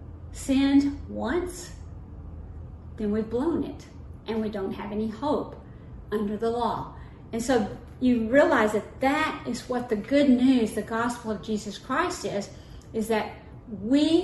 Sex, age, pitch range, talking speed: female, 40-59, 200-250 Hz, 150 wpm